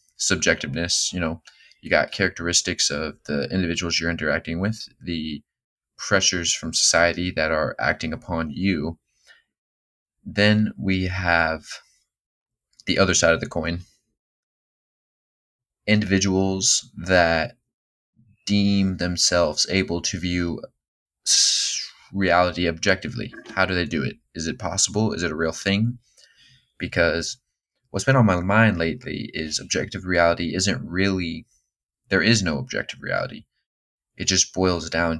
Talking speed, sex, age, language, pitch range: 125 wpm, male, 20-39, English, 85-100 Hz